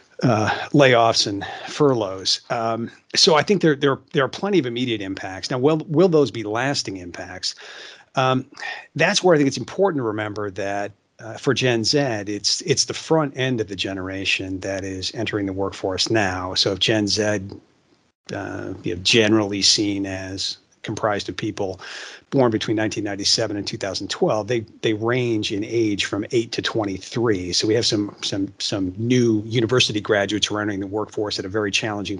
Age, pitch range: 40-59, 100-120 Hz